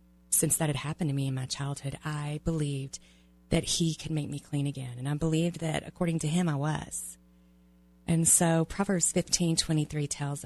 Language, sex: English, female